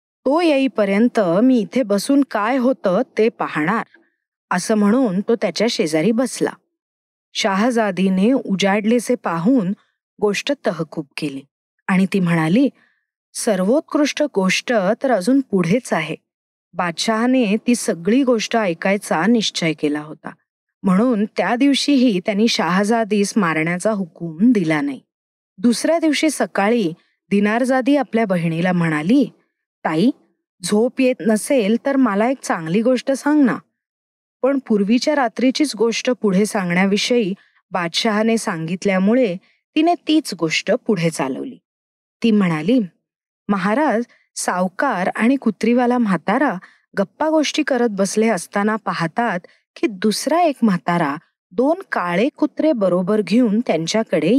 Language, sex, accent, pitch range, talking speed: Marathi, female, native, 195-255 Hz, 110 wpm